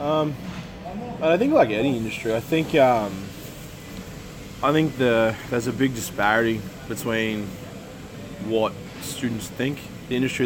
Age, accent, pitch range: 20-39, Australian, 105-130 Hz